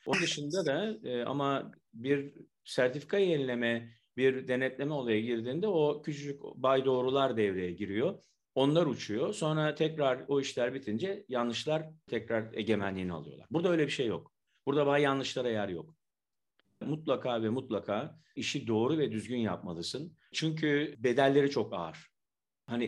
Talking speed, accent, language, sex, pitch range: 135 wpm, native, Turkish, male, 105-140 Hz